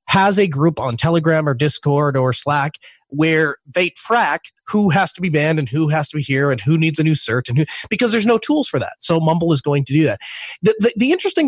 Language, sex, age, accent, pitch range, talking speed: English, male, 30-49, American, 150-190 Hz, 250 wpm